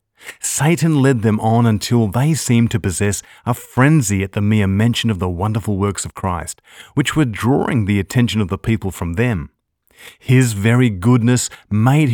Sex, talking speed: male, 175 wpm